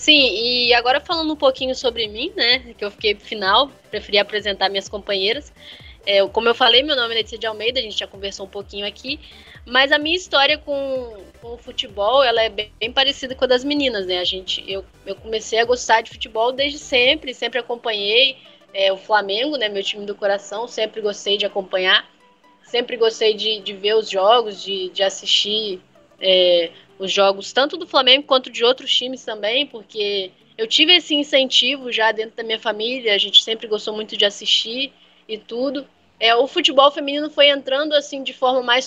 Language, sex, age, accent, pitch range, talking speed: Portuguese, female, 10-29, Brazilian, 210-270 Hz, 200 wpm